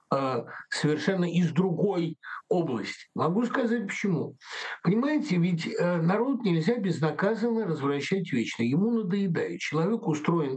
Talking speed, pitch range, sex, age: 100 wpm, 165-235 Hz, male, 60-79